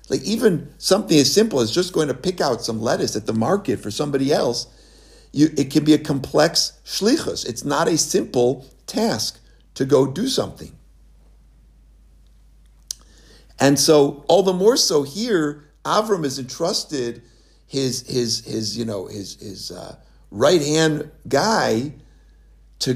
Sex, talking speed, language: male, 145 wpm, English